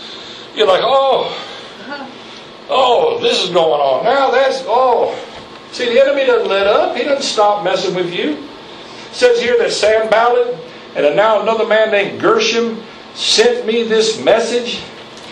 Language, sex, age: English, male, 60-79